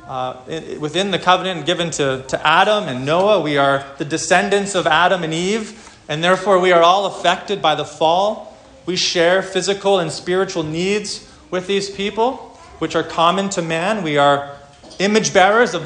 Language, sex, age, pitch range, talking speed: English, male, 30-49, 155-200 Hz, 175 wpm